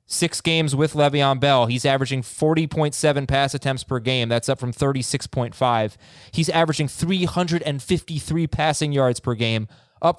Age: 20-39